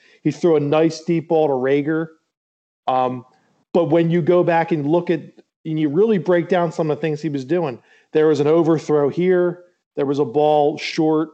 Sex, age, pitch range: male, 40-59, 145-175 Hz